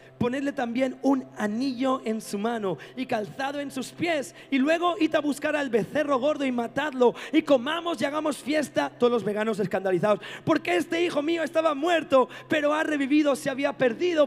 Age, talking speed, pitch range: 40-59, 180 wpm, 200-275 Hz